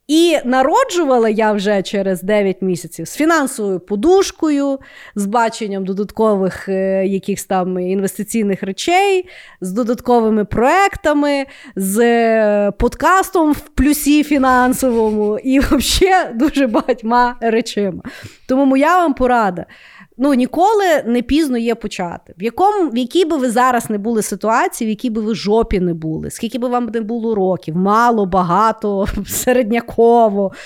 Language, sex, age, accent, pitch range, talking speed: Ukrainian, female, 20-39, native, 200-275 Hz, 135 wpm